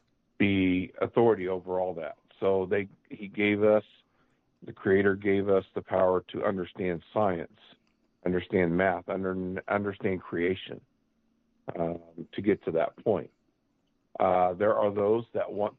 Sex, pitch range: male, 85-100 Hz